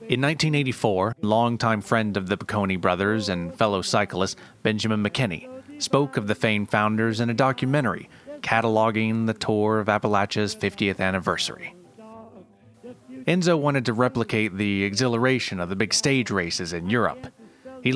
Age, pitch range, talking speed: 30-49, 105-140 Hz, 140 wpm